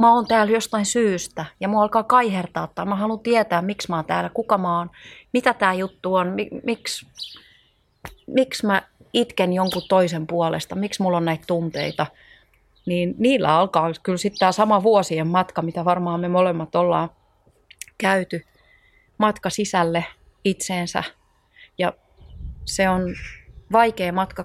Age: 30-49